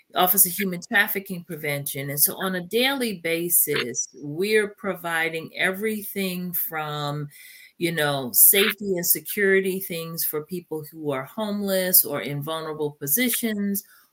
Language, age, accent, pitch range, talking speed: English, 40-59, American, 145-180 Hz, 125 wpm